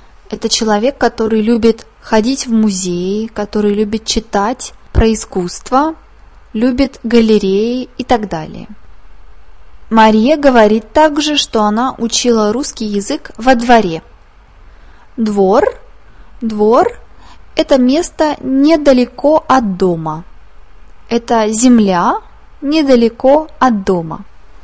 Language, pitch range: Russian, 200-260 Hz